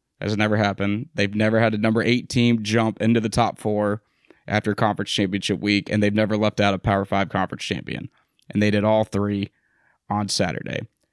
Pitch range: 105-125 Hz